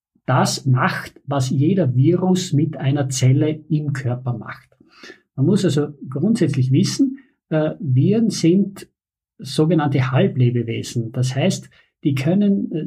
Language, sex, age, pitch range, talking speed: German, male, 50-69, 130-170 Hz, 110 wpm